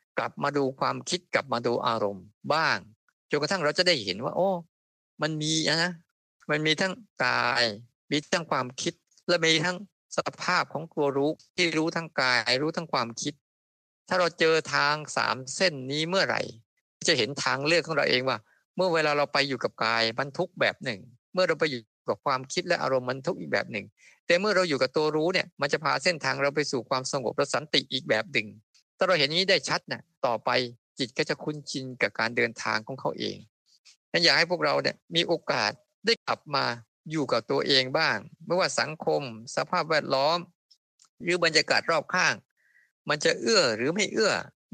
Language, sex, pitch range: Thai, male, 130-170 Hz